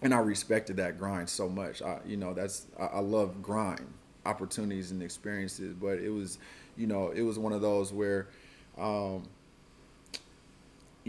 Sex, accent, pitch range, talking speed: male, American, 95-110 Hz, 160 wpm